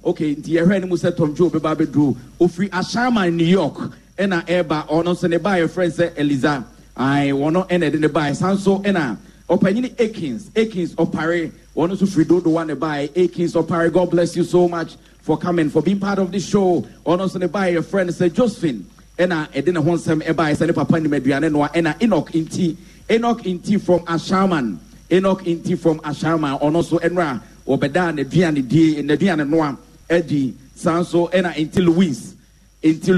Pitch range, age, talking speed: 155-180 Hz, 40-59, 195 wpm